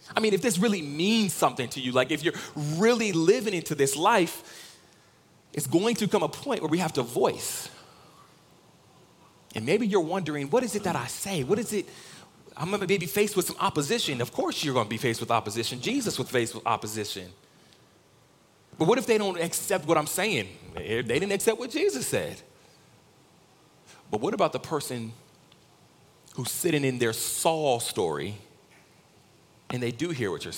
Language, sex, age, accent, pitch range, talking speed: English, male, 30-49, American, 130-185 Hz, 185 wpm